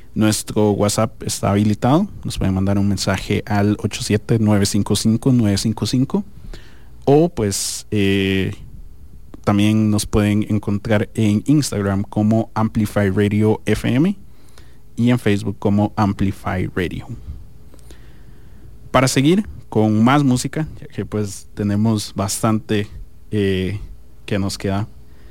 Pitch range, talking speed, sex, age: 100-115 Hz, 105 wpm, male, 30-49